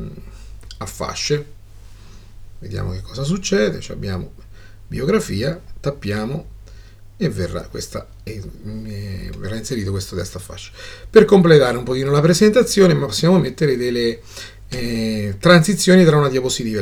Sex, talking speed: male, 125 wpm